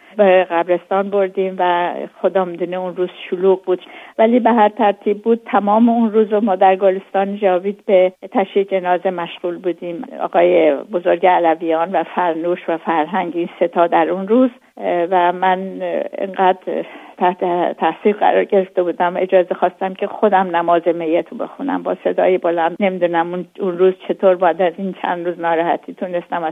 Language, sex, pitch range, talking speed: Persian, female, 170-195 Hz, 150 wpm